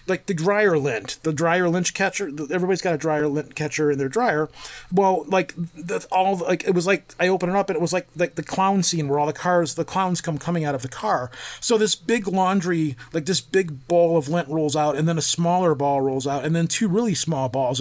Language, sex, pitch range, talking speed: English, male, 145-185 Hz, 255 wpm